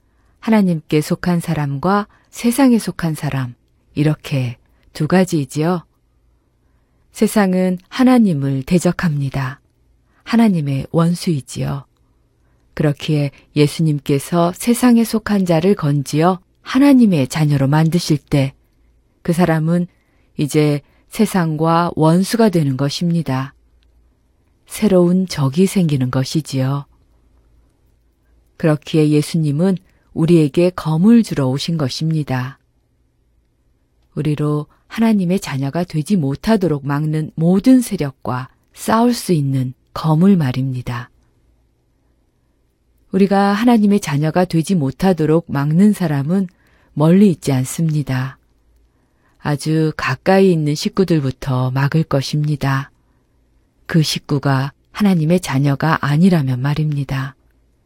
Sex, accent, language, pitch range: female, native, Korean, 135-180 Hz